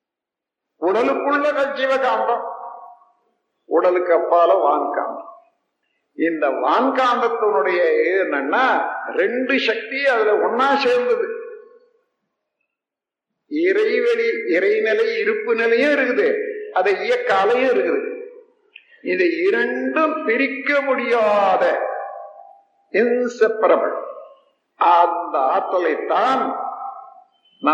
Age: 50-69